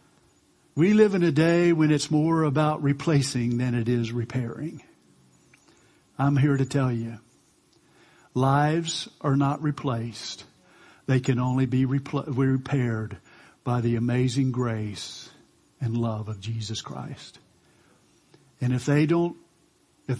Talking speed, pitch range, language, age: 130 wpm, 125-165 Hz, English, 50-69